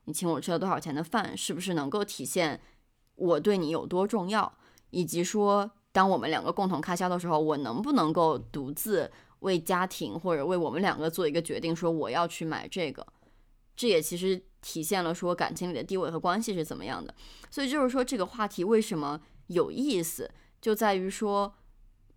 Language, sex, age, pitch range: Chinese, female, 20-39, 165-210 Hz